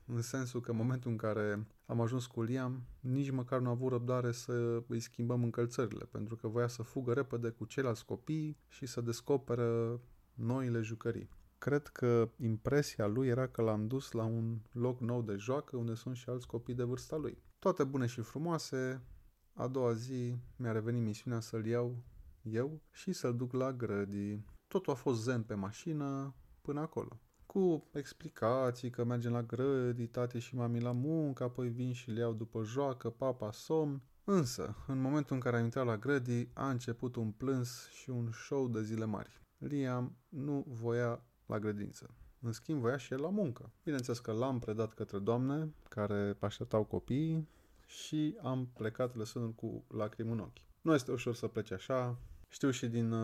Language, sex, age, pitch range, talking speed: Romanian, male, 20-39, 115-130 Hz, 180 wpm